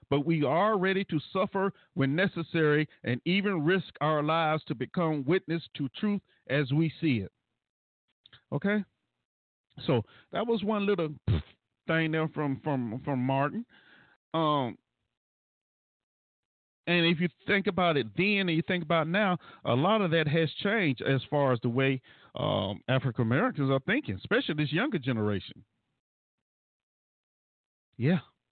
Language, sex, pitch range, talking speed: English, male, 130-170 Hz, 140 wpm